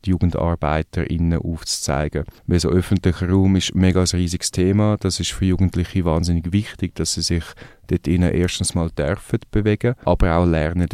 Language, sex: German, male